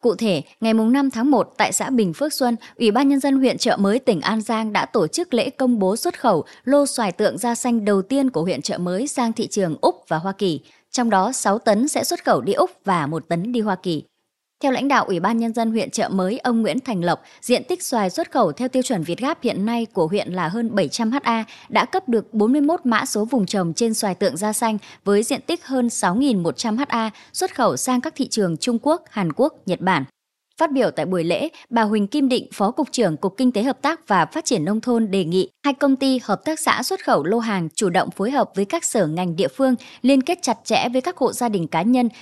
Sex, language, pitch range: male, Vietnamese, 195-265 Hz